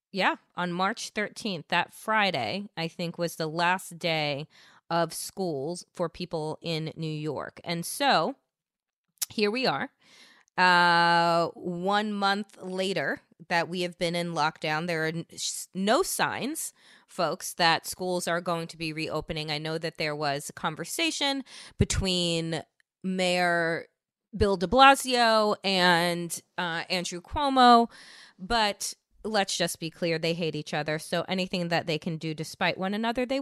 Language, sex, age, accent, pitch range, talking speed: English, female, 20-39, American, 160-190 Hz, 145 wpm